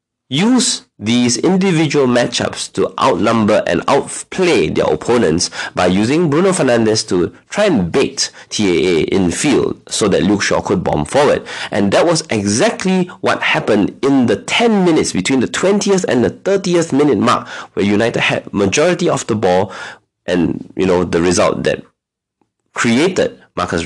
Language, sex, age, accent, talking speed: English, male, 30-49, Malaysian, 155 wpm